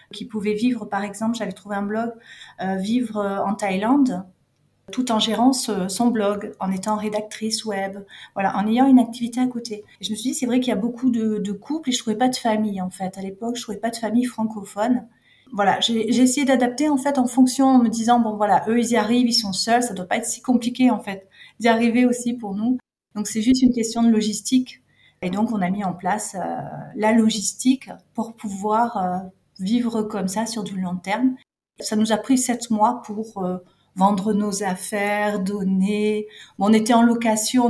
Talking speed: 225 wpm